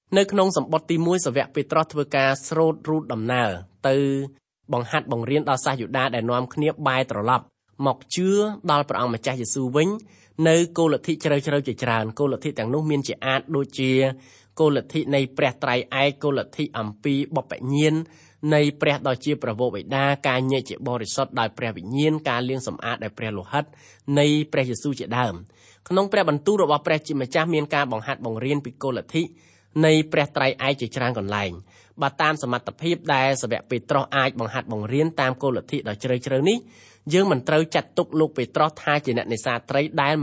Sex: male